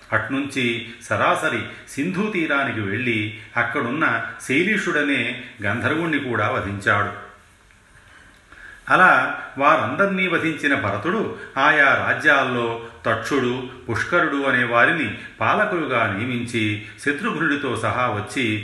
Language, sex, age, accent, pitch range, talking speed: Telugu, male, 40-59, native, 105-135 Hz, 80 wpm